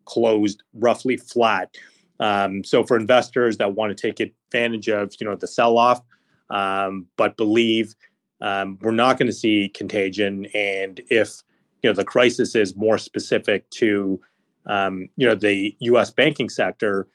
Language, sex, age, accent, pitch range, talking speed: English, male, 30-49, American, 100-115 Hz, 160 wpm